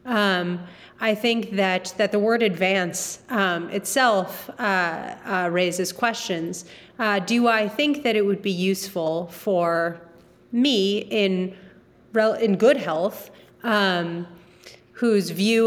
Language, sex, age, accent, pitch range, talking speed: English, female, 30-49, American, 185-230 Hz, 125 wpm